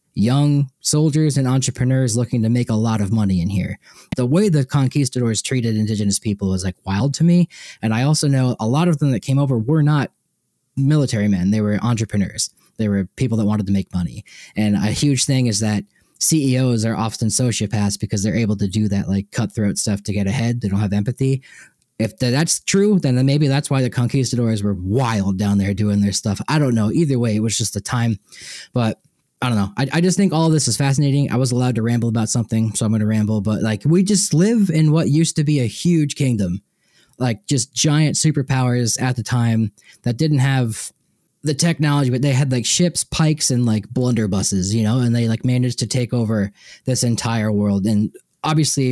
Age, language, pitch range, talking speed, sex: 20-39, English, 110-140 Hz, 215 wpm, male